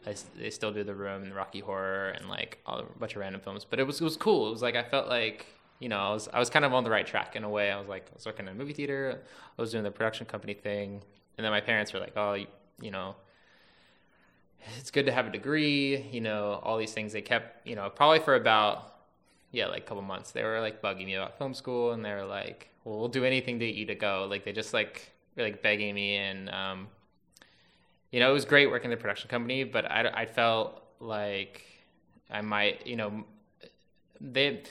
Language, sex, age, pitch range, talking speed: English, male, 20-39, 100-120 Hz, 245 wpm